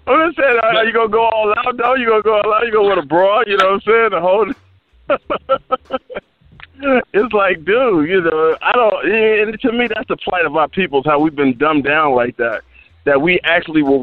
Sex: male